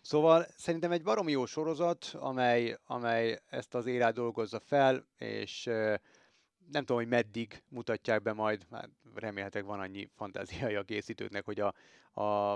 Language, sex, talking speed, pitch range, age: Hungarian, male, 150 wpm, 110-125 Hz, 30-49